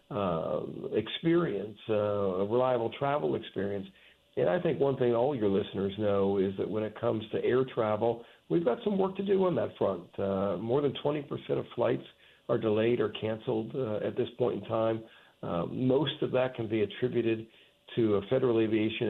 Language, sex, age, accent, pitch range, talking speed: English, male, 50-69, American, 105-135 Hz, 190 wpm